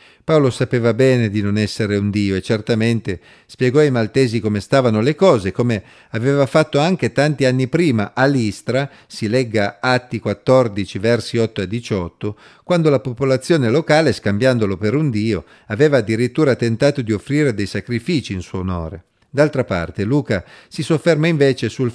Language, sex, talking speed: Italian, male, 160 wpm